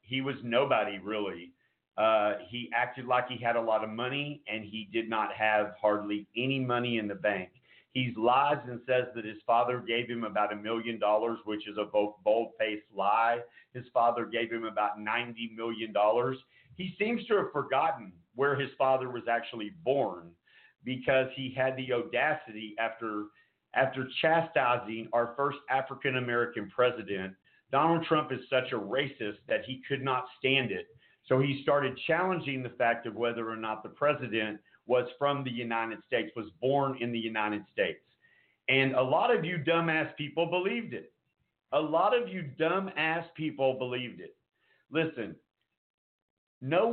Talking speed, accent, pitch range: 160 wpm, American, 110-135 Hz